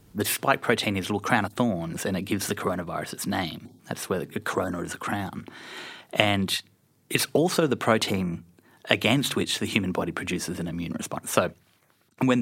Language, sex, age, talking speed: English, male, 30-49, 190 wpm